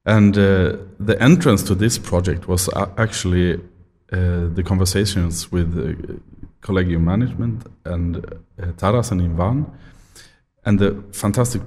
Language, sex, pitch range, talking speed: Ukrainian, male, 90-110 Hz, 125 wpm